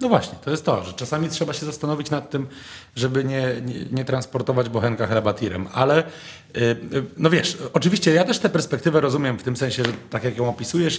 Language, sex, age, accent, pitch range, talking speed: Polish, male, 30-49, native, 110-140 Hz, 200 wpm